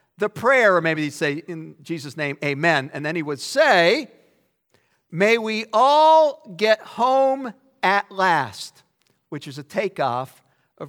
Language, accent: English, American